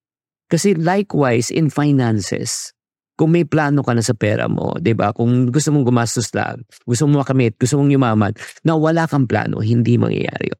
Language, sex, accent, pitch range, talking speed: English, male, Filipino, 110-140 Hz, 170 wpm